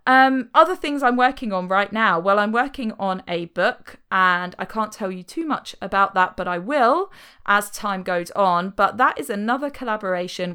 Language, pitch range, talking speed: English, 175-230 Hz, 195 wpm